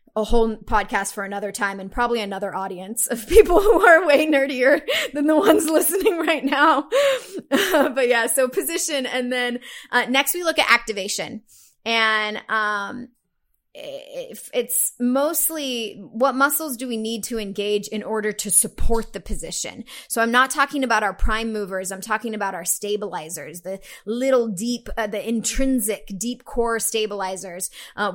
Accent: American